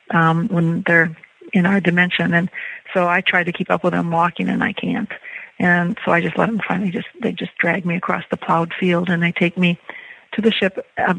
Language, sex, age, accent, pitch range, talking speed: English, female, 40-59, American, 175-200 Hz, 230 wpm